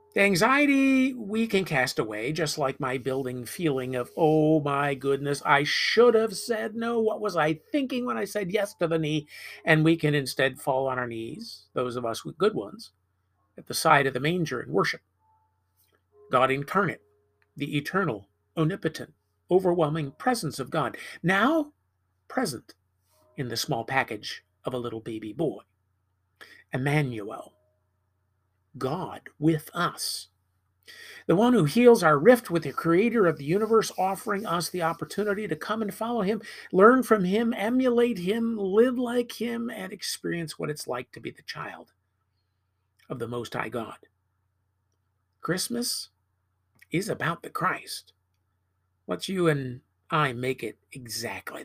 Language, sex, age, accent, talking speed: English, male, 50-69, American, 155 wpm